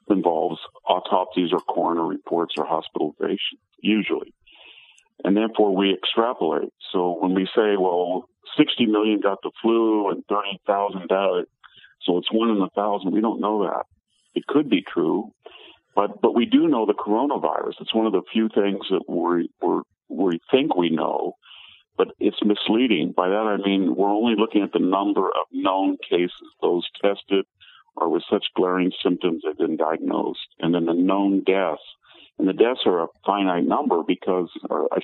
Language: English